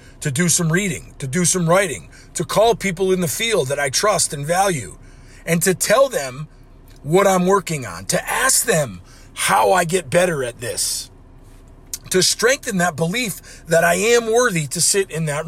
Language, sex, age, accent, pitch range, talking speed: English, male, 50-69, American, 130-220 Hz, 185 wpm